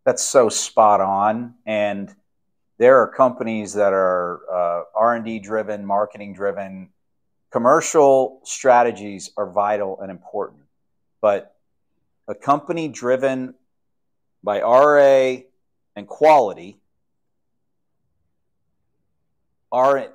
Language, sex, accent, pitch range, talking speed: English, male, American, 105-130 Hz, 90 wpm